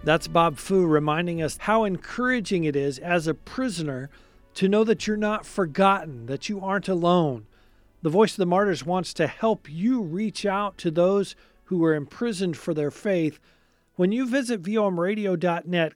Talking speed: 170 wpm